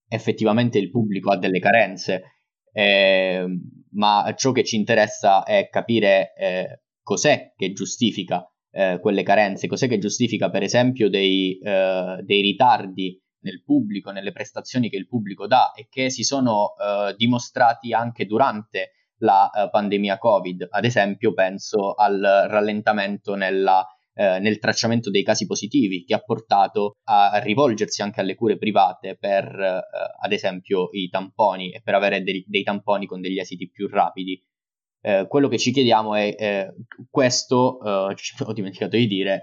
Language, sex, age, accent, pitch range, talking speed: Italian, male, 20-39, native, 95-115 Hz, 150 wpm